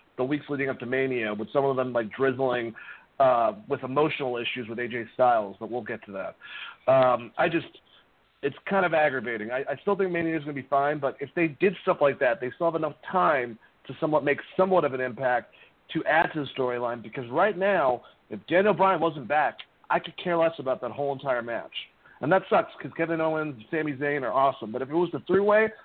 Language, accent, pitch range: English, American, 125-160 Hz